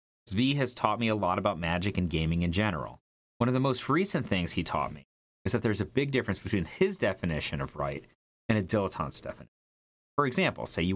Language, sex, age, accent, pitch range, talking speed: English, male, 30-49, American, 80-115 Hz, 220 wpm